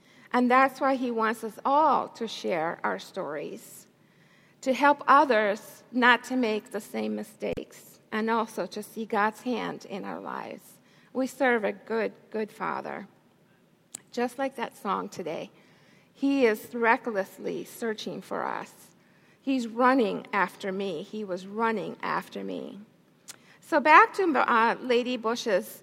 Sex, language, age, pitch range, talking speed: female, English, 50-69, 210-255 Hz, 140 wpm